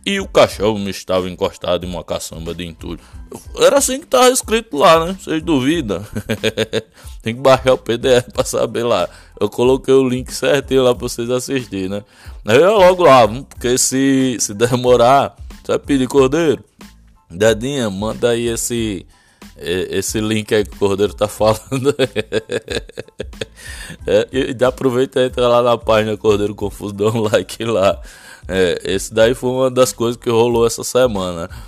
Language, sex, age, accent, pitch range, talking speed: Portuguese, male, 20-39, Brazilian, 100-130 Hz, 165 wpm